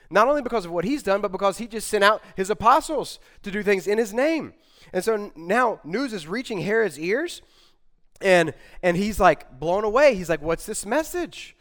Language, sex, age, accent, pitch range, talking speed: English, male, 30-49, American, 150-215 Hz, 210 wpm